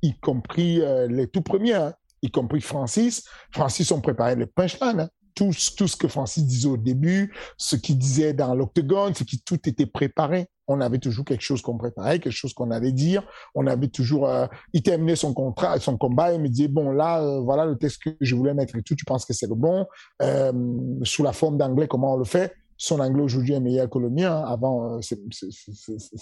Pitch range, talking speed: 125-160 Hz, 235 wpm